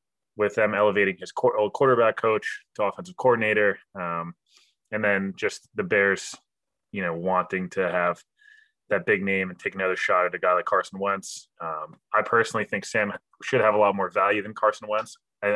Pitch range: 95-125 Hz